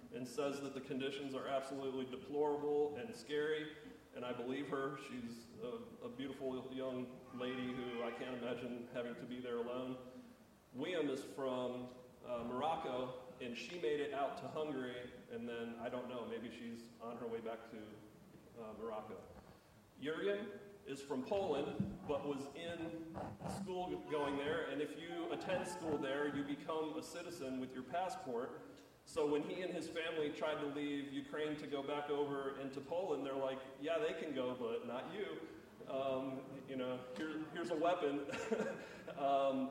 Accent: American